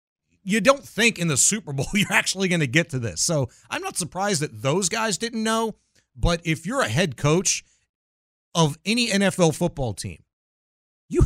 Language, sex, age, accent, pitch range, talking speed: English, male, 40-59, American, 115-165 Hz, 185 wpm